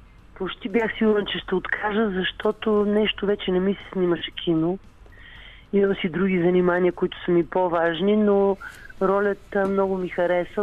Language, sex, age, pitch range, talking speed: Bulgarian, male, 40-59, 165-195 Hz, 150 wpm